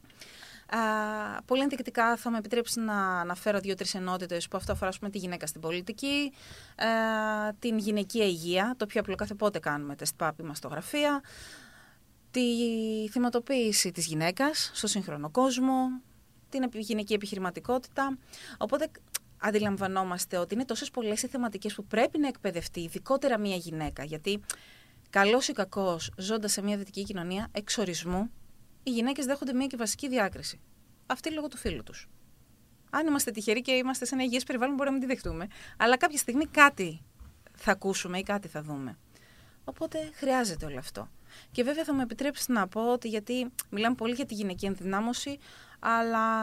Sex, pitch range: female, 190-255 Hz